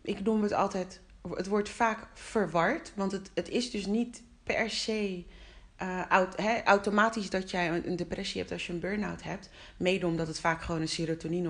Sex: female